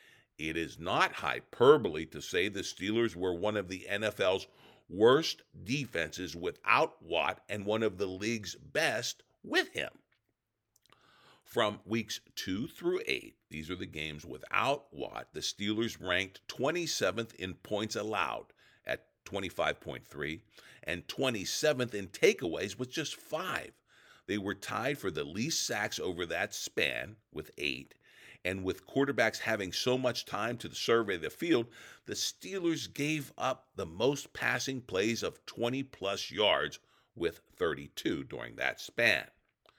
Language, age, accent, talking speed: English, 50-69, American, 135 wpm